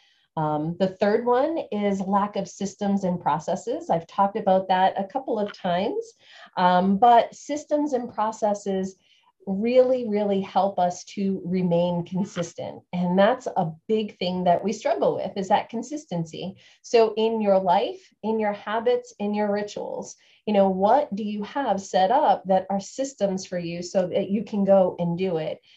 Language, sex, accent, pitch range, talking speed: English, female, American, 180-220 Hz, 170 wpm